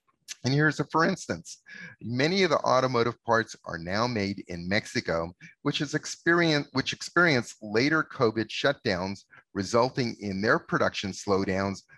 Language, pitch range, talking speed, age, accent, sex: English, 105-140 Hz, 140 wpm, 30-49, American, male